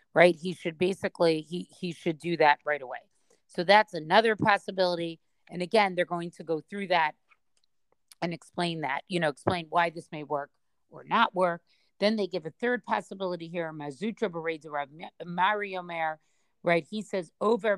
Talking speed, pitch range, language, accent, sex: 170 wpm, 165-200 Hz, English, American, female